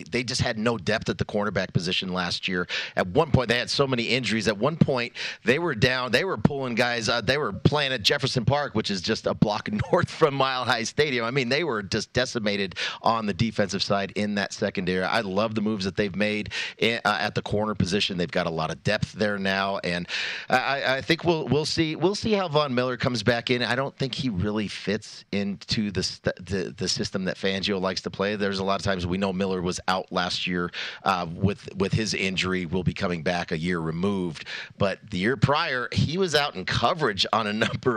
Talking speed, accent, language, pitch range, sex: 235 wpm, American, English, 95-135 Hz, male